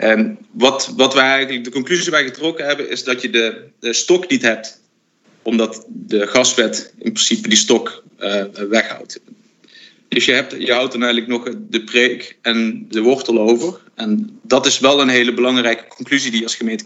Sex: male